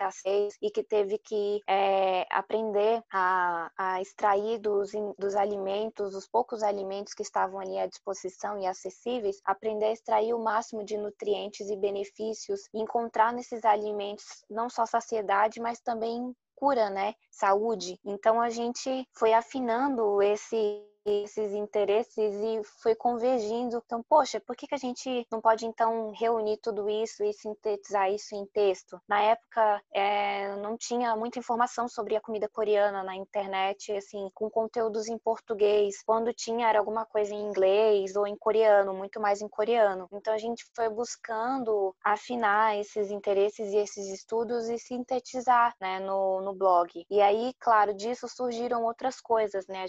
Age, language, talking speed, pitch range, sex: 20-39, Portuguese, 155 wpm, 200-230 Hz, female